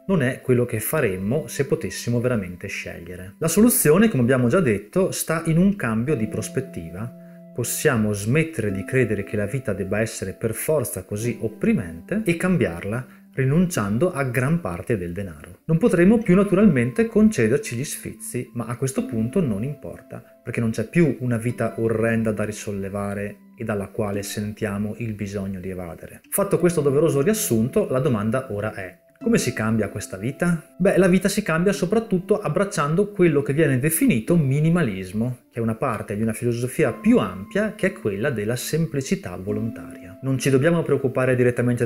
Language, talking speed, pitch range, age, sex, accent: Italian, 170 wpm, 110-170 Hz, 30-49, male, native